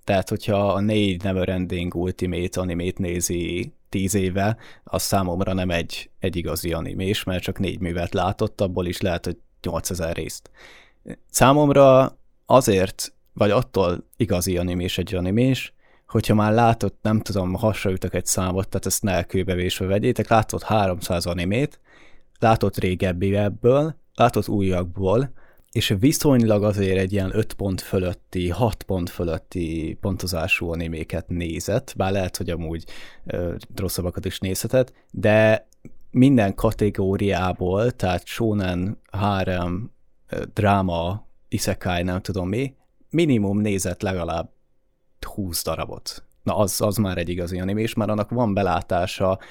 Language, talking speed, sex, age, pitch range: Hungarian, 130 wpm, male, 20-39, 90-110 Hz